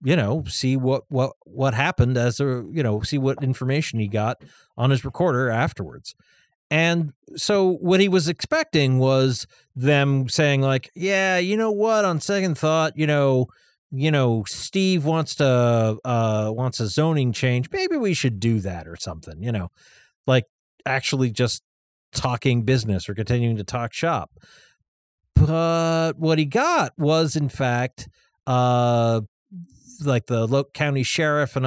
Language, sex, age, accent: English, male, 40-59, American